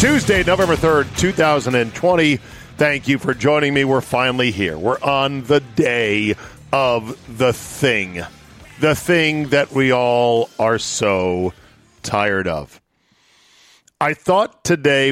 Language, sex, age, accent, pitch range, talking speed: English, male, 50-69, American, 115-145 Hz, 125 wpm